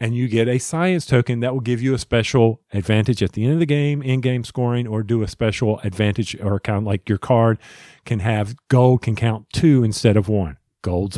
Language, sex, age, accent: English, male, 40-59, American